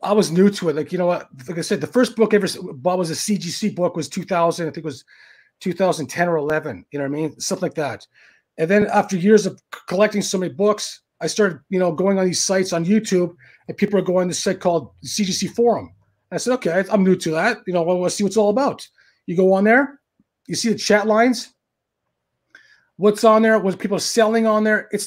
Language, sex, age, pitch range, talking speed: English, male, 30-49, 185-230 Hz, 260 wpm